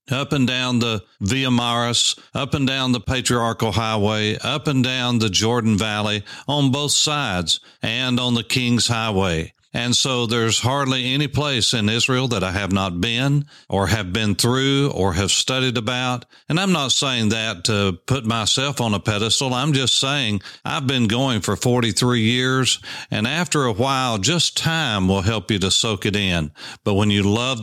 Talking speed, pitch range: 180 wpm, 105-125 Hz